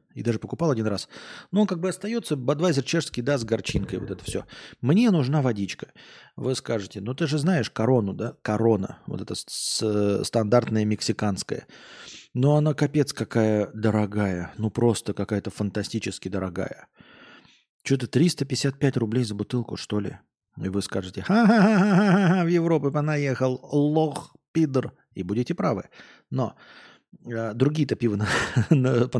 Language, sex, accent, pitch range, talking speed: Russian, male, native, 105-140 Hz, 145 wpm